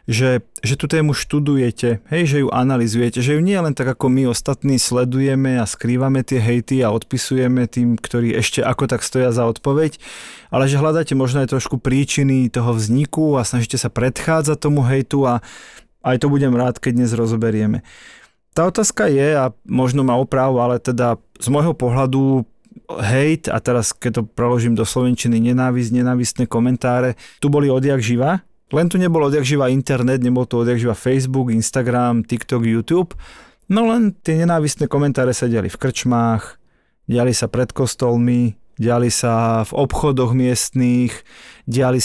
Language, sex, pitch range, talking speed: Slovak, male, 120-145 Hz, 160 wpm